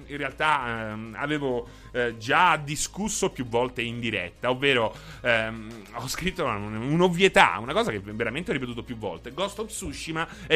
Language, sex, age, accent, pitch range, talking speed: Italian, male, 30-49, native, 120-165 Hz, 160 wpm